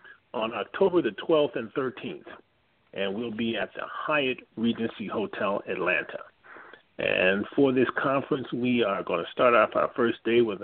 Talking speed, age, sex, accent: 165 wpm, 40-59, male, American